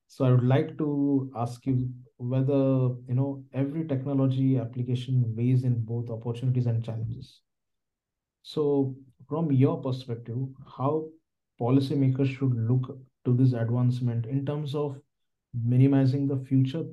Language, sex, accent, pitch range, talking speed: English, male, Indian, 120-135 Hz, 130 wpm